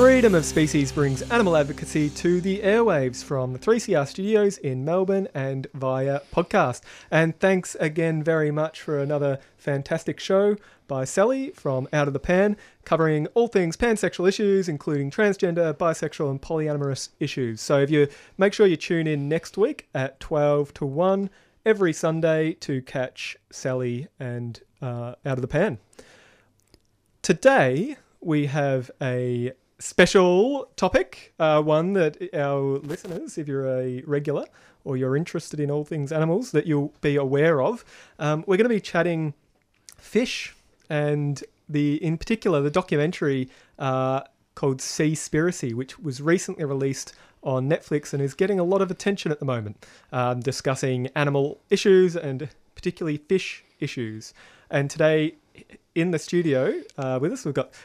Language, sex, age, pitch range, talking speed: English, male, 30-49, 135-180 Hz, 150 wpm